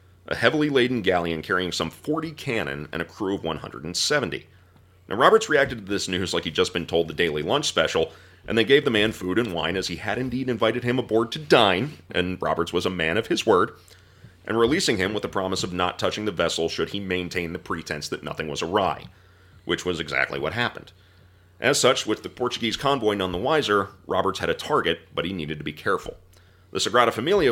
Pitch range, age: 85-110 Hz, 30-49